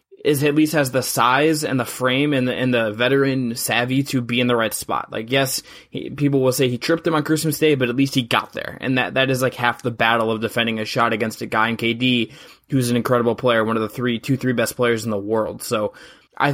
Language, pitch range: English, 120-140 Hz